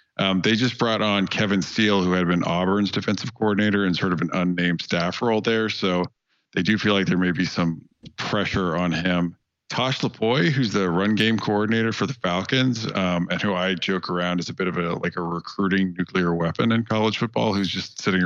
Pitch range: 90-105 Hz